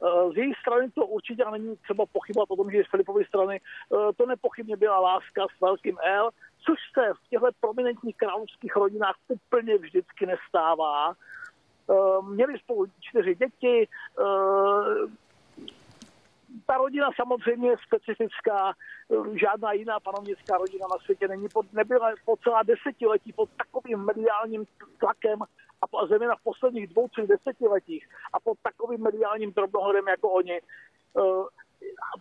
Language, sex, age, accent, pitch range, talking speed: Czech, male, 50-69, native, 205-275 Hz, 130 wpm